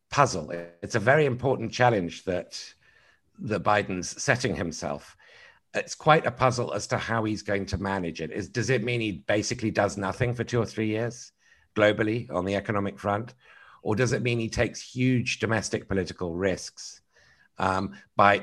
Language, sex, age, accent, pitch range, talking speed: English, male, 50-69, British, 90-110 Hz, 165 wpm